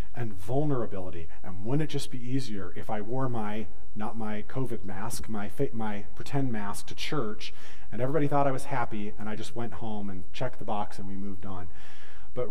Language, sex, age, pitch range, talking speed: English, male, 30-49, 90-130 Hz, 205 wpm